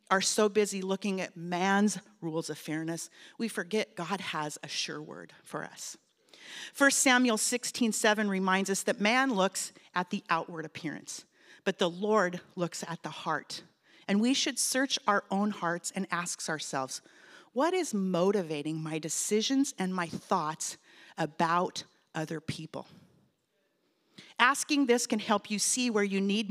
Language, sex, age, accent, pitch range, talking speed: English, female, 40-59, American, 170-230 Hz, 155 wpm